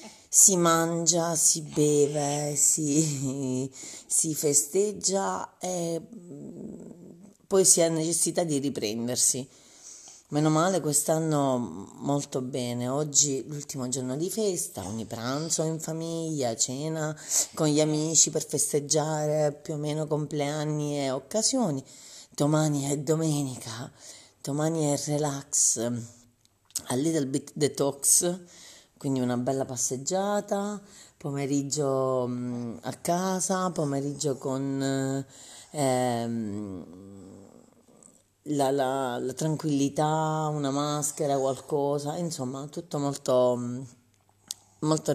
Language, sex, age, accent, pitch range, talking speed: Italian, female, 30-49, native, 130-160 Hz, 95 wpm